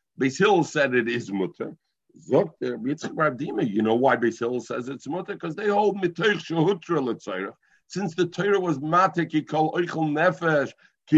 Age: 60-79